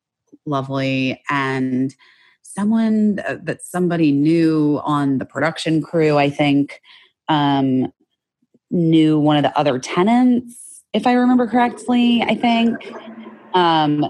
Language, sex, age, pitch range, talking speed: English, female, 30-49, 150-200 Hz, 115 wpm